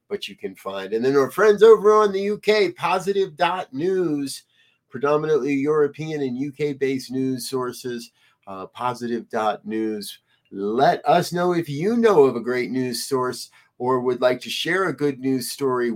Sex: male